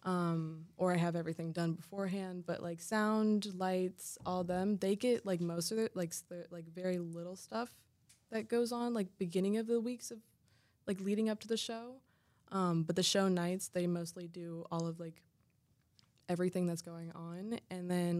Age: 20-39